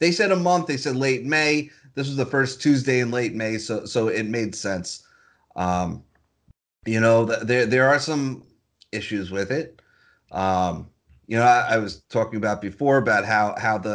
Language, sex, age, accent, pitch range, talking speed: English, male, 30-49, American, 105-140 Hz, 190 wpm